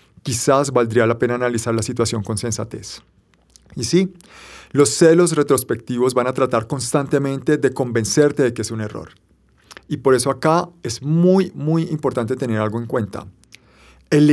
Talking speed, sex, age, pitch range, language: 160 wpm, male, 40-59, 110-135 Hz, Spanish